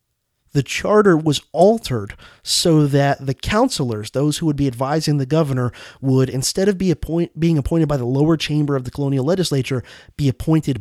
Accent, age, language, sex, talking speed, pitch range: American, 30-49, English, male, 165 wpm, 125-165 Hz